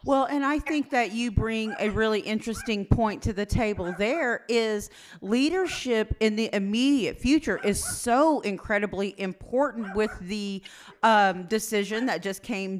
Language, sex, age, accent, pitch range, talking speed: English, female, 40-59, American, 195-235 Hz, 150 wpm